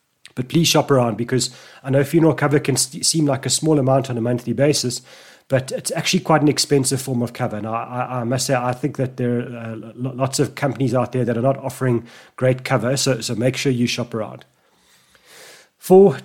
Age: 30-49